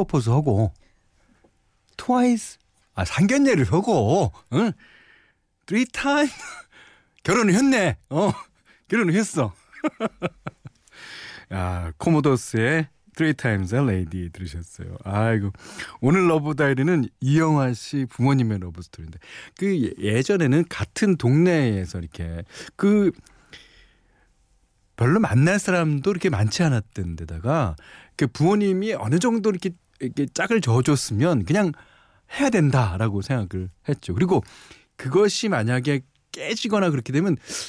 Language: Korean